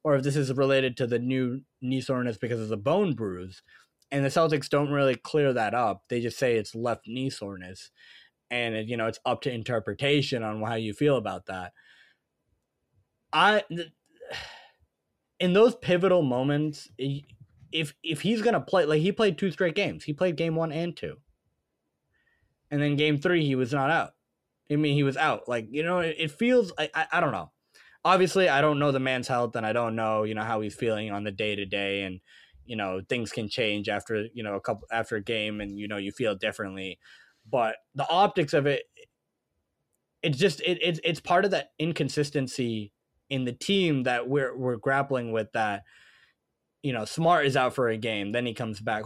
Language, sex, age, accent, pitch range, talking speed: English, male, 20-39, American, 110-155 Hz, 205 wpm